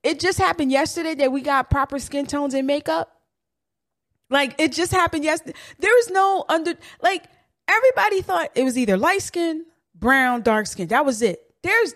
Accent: American